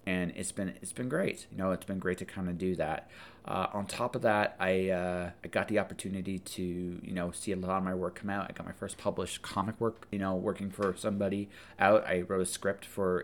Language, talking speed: English, 255 wpm